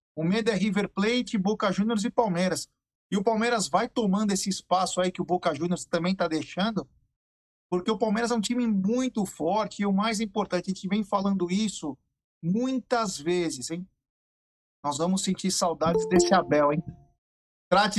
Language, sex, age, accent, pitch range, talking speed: Portuguese, male, 50-69, Brazilian, 170-205 Hz, 175 wpm